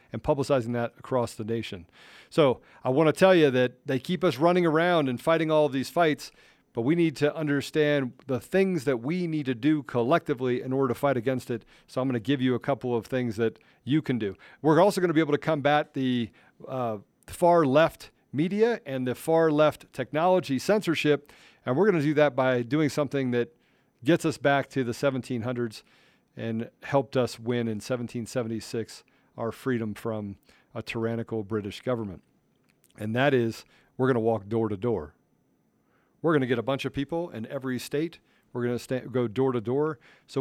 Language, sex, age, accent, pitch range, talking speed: English, male, 40-59, American, 120-150 Hz, 185 wpm